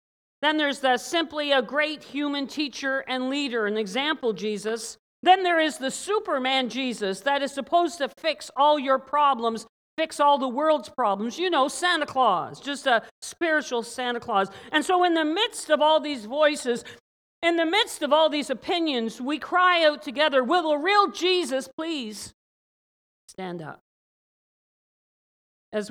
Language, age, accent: English, 50-69, American